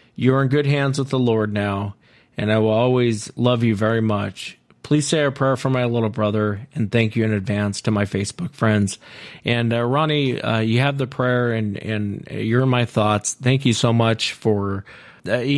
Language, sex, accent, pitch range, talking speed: English, male, American, 105-125 Hz, 195 wpm